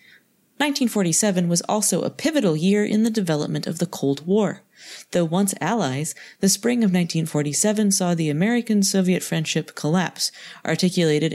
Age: 30-49